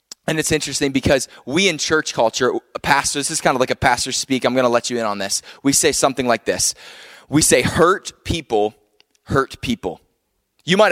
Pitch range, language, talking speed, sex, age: 130-170 Hz, English, 215 wpm, male, 20-39